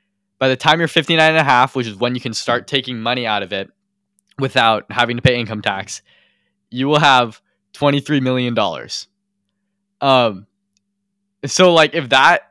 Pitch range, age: 110-155 Hz, 10-29